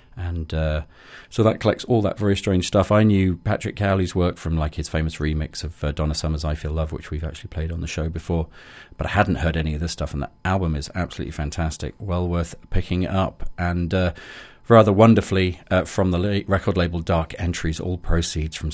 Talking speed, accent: 215 wpm, British